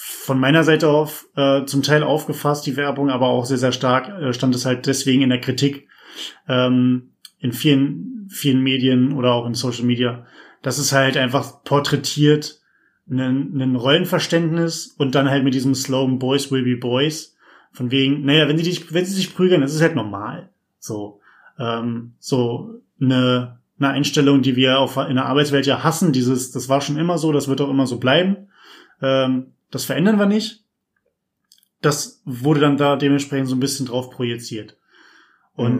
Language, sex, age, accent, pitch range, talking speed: German, male, 20-39, German, 130-150 Hz, 180 wpm